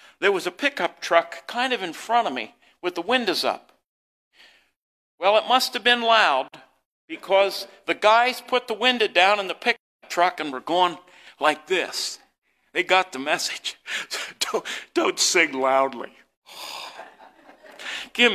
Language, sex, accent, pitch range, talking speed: English, male, American, 155-255 Hz, 150 wpm